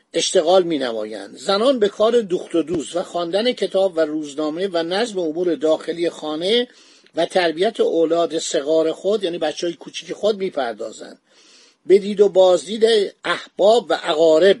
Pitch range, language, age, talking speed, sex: 175-235 Hz, Persian, 50-69, 150 wpm, male